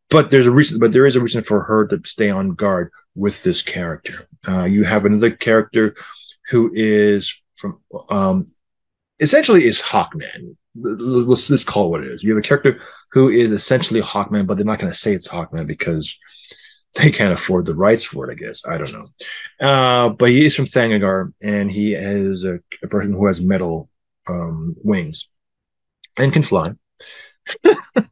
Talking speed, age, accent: 180 wpm, 30-49, American